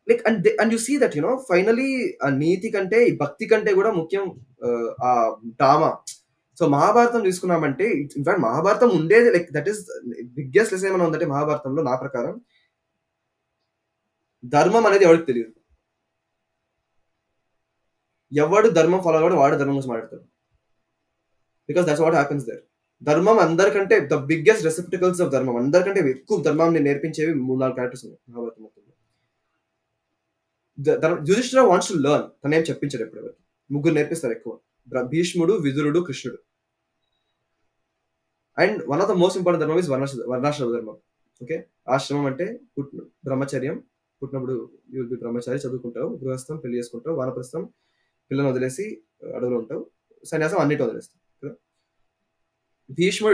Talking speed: 110 wpm